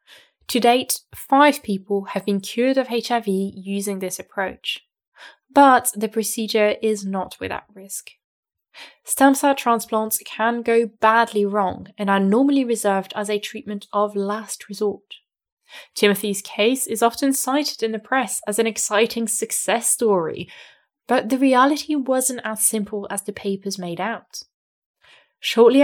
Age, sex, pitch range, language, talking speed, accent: 10-29, female, 200-245 Hz, English, 140 wpm, British